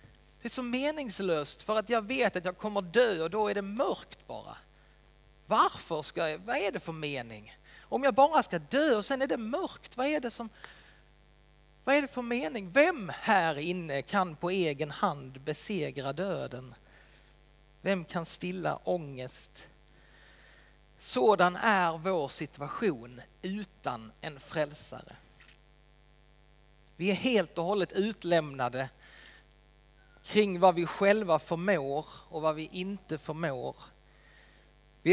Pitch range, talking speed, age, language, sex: 155-215 Hz, 140 wpm, 30-49, Swedish, male